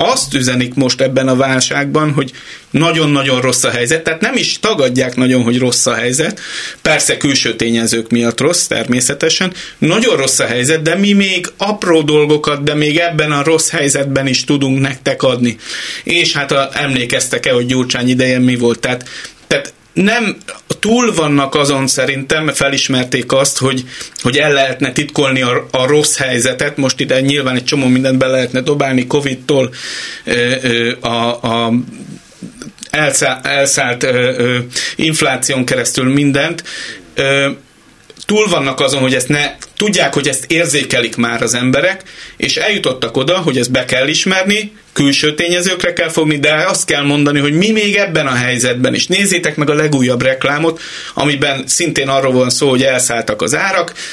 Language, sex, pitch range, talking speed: Hungarian, male, 125-155 Hz, 160 wpm